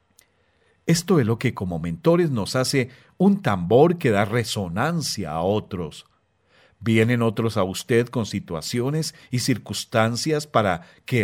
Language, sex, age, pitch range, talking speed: Spanish, male, 50-69, 100-140 Hz, 135 wpm